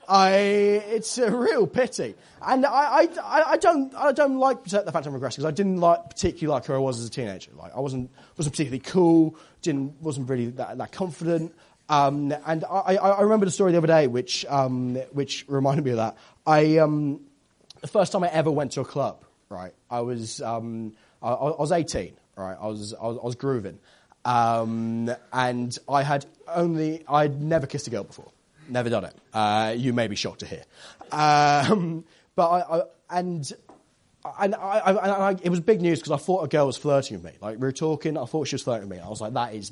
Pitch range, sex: 130-175 Hz, male